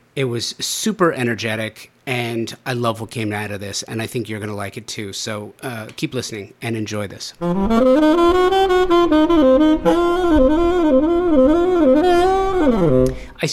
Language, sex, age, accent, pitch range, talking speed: English, male, 30-49, American, 115-155 Hz, 130 wpm